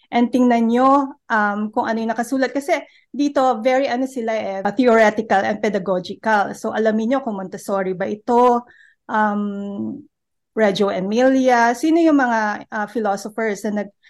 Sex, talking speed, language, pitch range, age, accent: female, 145 wpm, Filipino, 205-260 Hz, 20-39, native